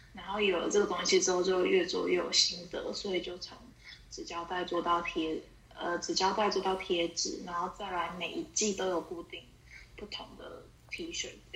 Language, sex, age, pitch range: Chinese, female, 10-29, 175-235 Hz